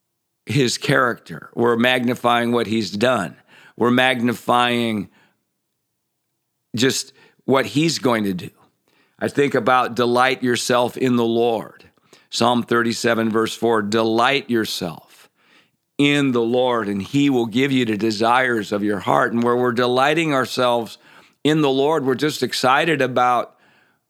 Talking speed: 135 wpm